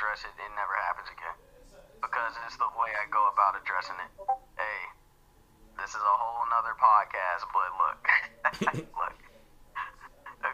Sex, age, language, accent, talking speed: male, 20-39, English, American, 140 wpm